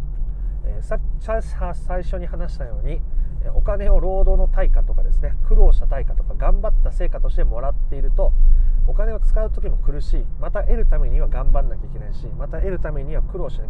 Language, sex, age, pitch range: Japanese, male, 30-49, 125-160 Hz